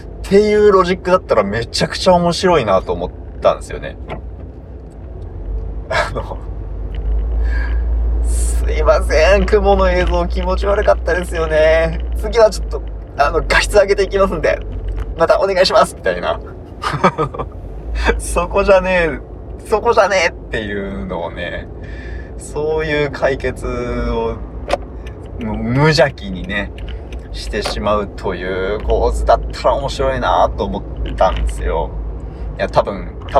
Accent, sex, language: native, male, Japanese